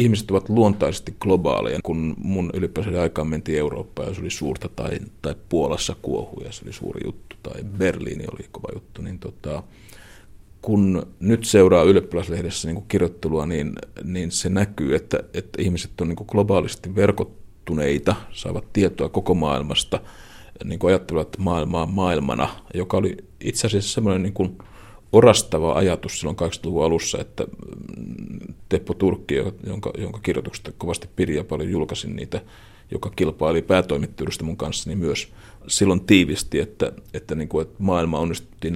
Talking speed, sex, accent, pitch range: 145 wpm, male, native, 85-100 Hz